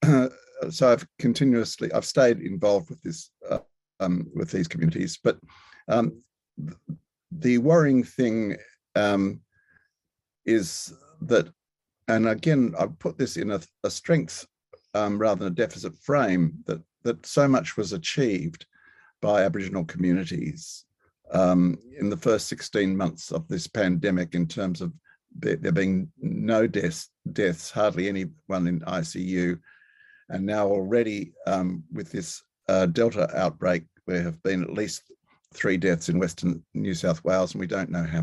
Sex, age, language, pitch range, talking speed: male, 50-69, English, 85-115 Hz, 150 wpm